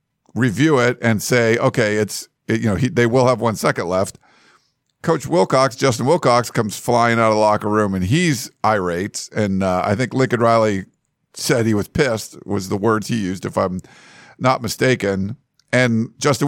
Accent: American